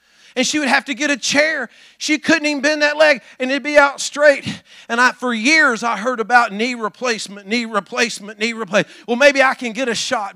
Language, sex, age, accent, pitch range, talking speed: English, male, 50-69, American, 205-275 Hz, 220 wpm